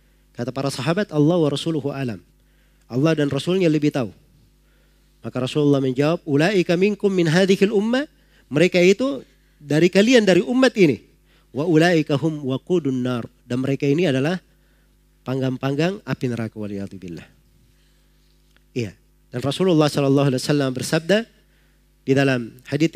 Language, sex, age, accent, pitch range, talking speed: Indonesian, male, 40-59, native, 130-165 Hz, 125 wpm